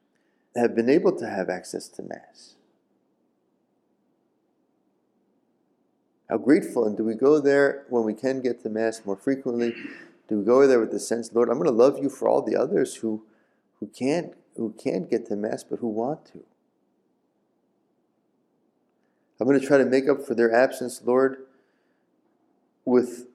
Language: English